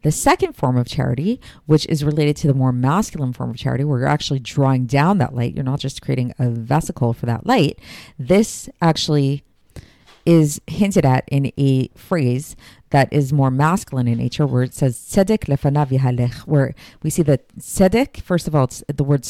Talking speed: 190 wpm